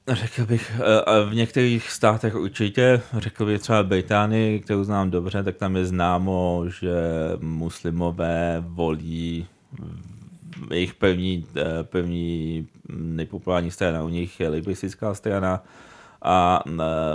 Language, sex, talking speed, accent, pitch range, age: Czech, male, 110 wpm, native, 85-100 Hz, 30-49